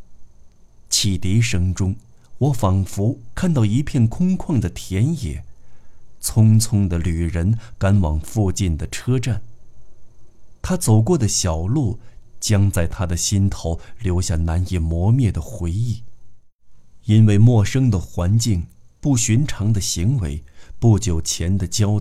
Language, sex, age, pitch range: Chinese, male, 50-69, 85-115 Hz